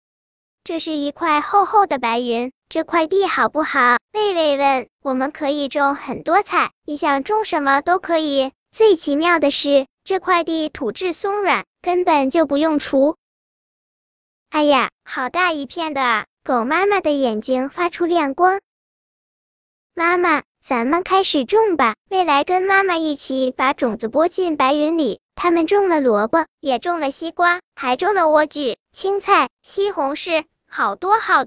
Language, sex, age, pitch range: Chinese, male, 10-29, 275-355 Hz